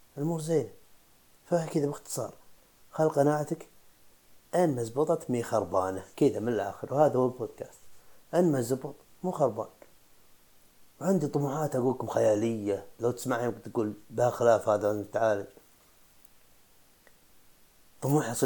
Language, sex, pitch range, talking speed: Arabic, male, 105-140 Hz, 110 wpm